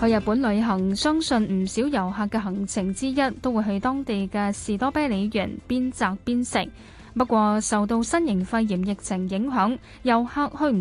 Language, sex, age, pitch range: Chinese, female, 10-29, 195-255 Hz